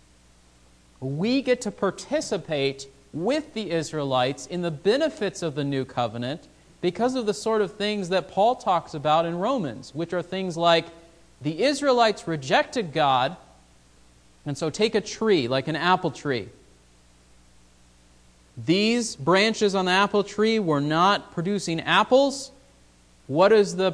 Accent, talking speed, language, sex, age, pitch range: American, 140 wpm, English, male, 40-59, 140-210 Hz